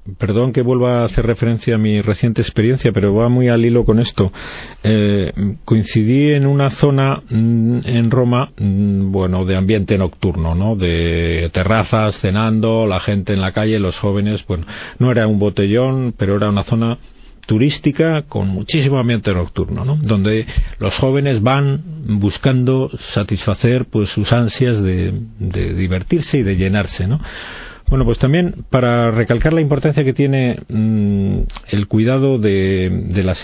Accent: Spanish